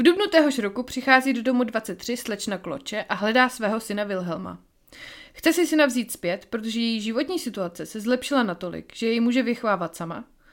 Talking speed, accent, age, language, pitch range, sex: 180 wpm, native, 30-49, Czech, 185-255 Hz, female